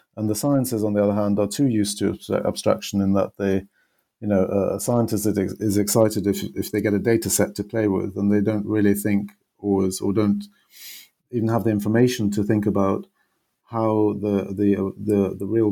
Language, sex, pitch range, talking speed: English, male, 95-105 Hz, 200 wpm